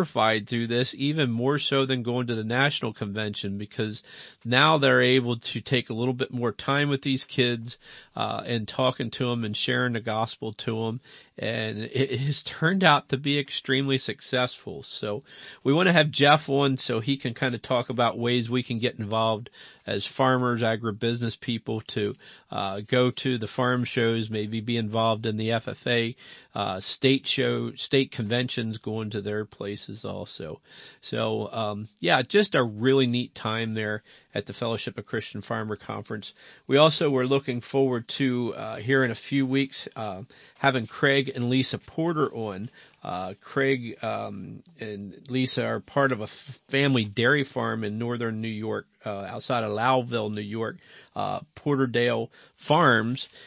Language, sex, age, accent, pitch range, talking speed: English, male, 40-59, American, 110-135 Hz, 170 wpm